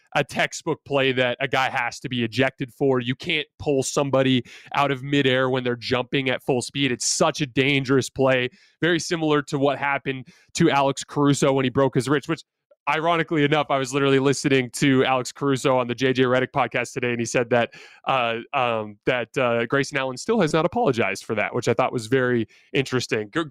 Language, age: English, 20-39